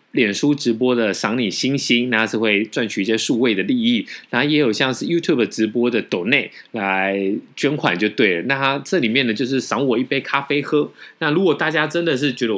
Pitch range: 110-145 Hz